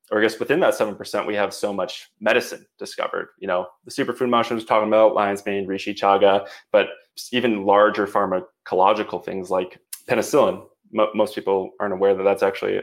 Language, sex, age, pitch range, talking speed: English, male, 20-39, 95-115 Hz, 175 wpm